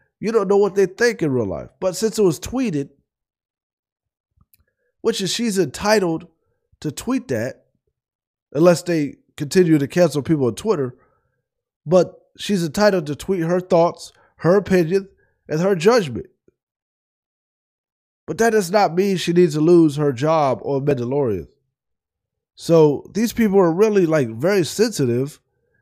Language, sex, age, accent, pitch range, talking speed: English, male, 20-39, American, 145-200 Hz, 145 wpm